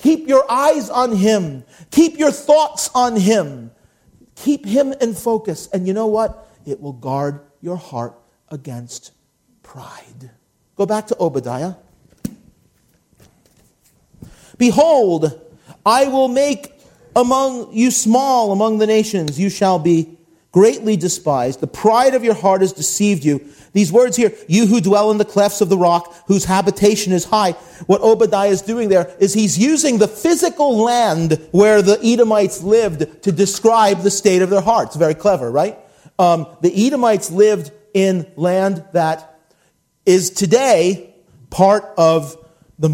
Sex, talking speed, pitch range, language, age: male, 145 wpm, 165-215 Hz, English, 40-59